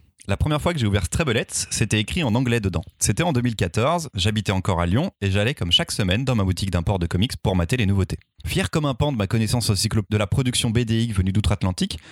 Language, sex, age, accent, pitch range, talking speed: French, male, 30-49, French, 95-130 Hz, 240 wpm